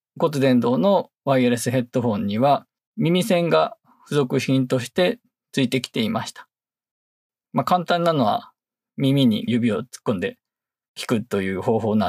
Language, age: Japanese, 20-39